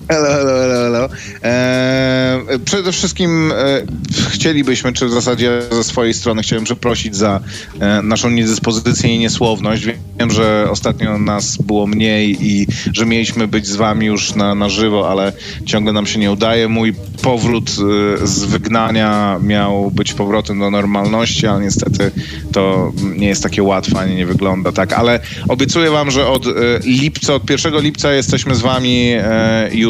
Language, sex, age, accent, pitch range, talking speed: Polish, male, 30-49, native, 105-125 Hz, 165 wpm